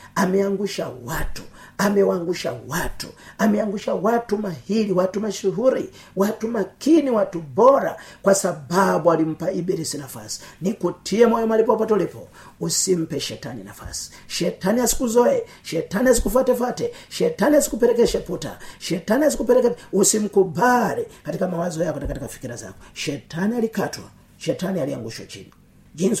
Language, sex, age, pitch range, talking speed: Swahili, male, 40-59, 170-230 Hz, 110 wpm